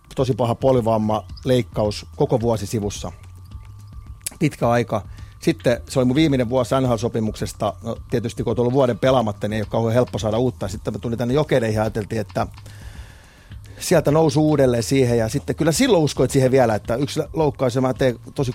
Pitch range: 105-130 Hz